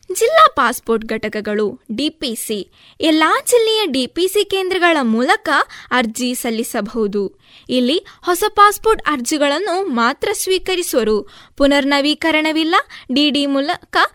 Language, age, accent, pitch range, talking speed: Kannada, 20-39, native, 245-350 Hz, 85 wpm